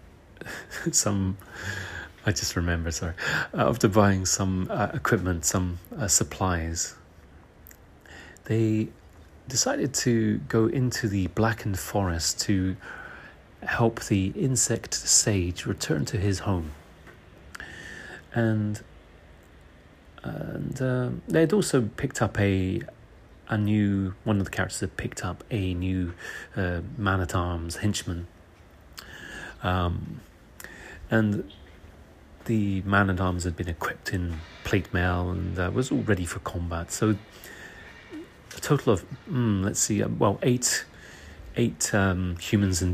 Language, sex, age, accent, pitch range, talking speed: English, male, 30-49, British, 85-110 Hz, 120 wpm